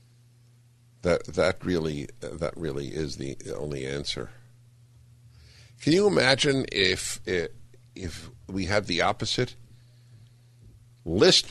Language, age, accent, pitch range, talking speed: English, 60-79, American, 85-120 Hz, 100 wpm